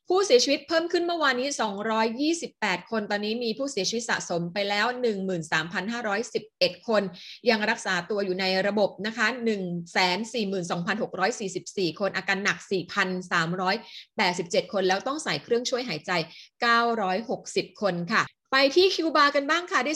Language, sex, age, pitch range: Thai, female, 20-39, 195-255 Hz